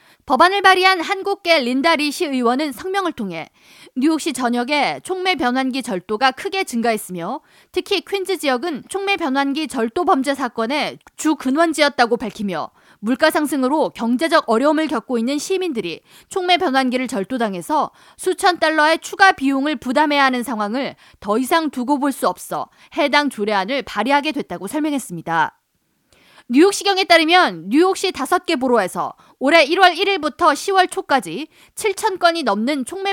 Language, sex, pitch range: Korean, female, 250-345 Hz